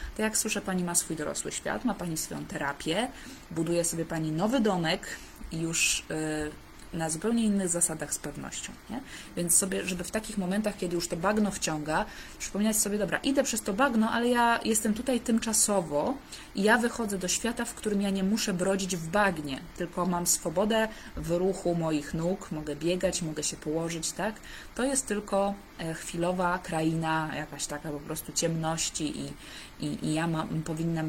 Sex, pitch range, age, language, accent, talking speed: female, 160-200 Hz, 20-39, Polish, native, 170 wpm